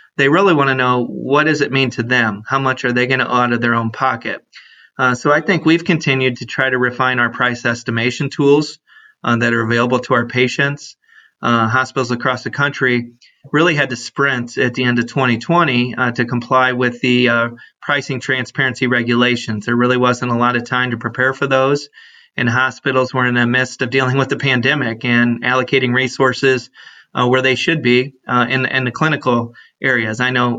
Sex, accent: male, American